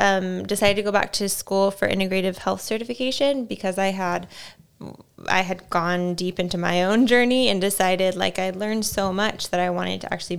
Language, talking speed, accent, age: English, 195 wpm, American, 10-29